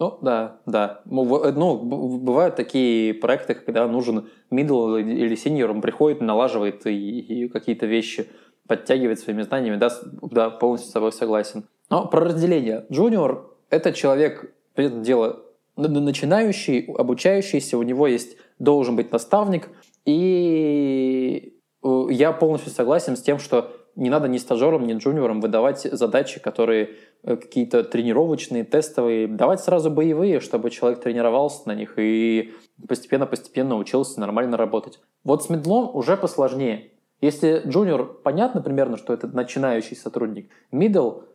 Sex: male